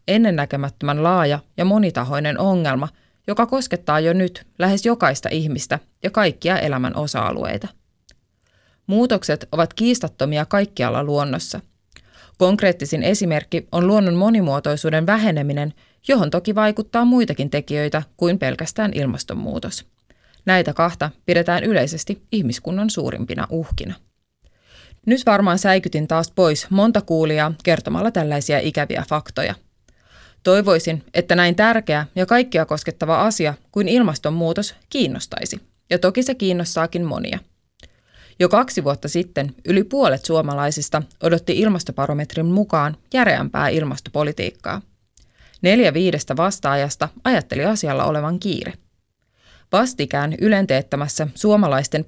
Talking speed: 105 wpm